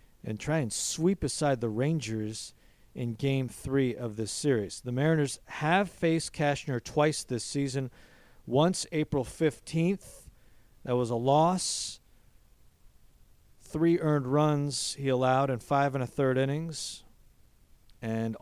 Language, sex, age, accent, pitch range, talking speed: English, male, 50-69, American, 115-150 Hz, 130 wpm